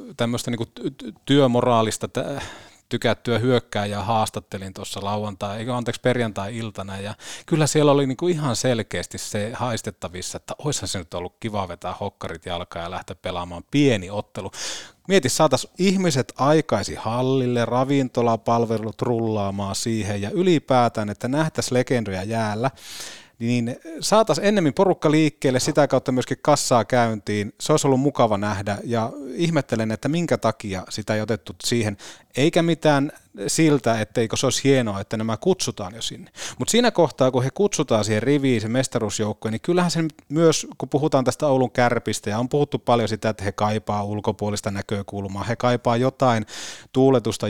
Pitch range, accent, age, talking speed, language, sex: 105-140 Hz, native, 30-49, 145 wpm, Finnish, male